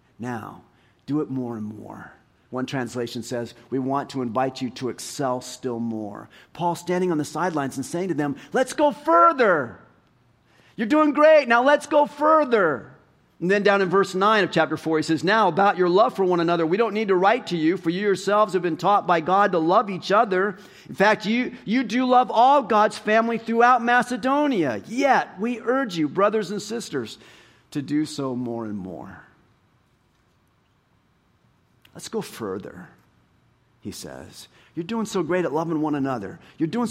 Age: 40-59